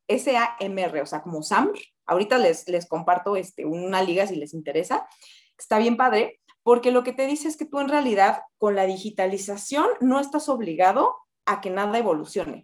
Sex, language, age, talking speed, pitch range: female, Spanish, 30-49, 175 wpm, 200-265 Hz